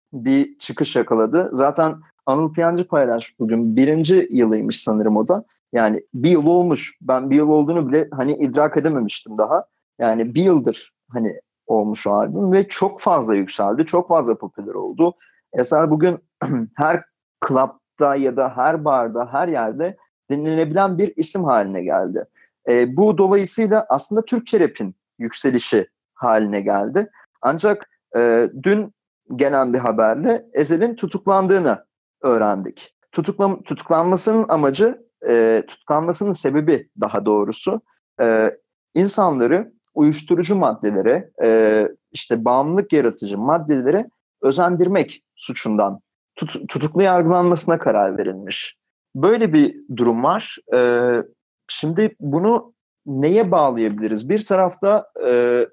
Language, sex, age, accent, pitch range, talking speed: Turkish, male, 40-59, native, 120-195 Hz, 115 wpm